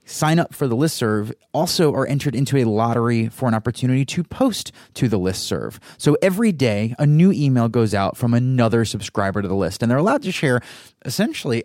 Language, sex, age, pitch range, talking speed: English, male, 30-49, 105-145 Hz, 200 wpm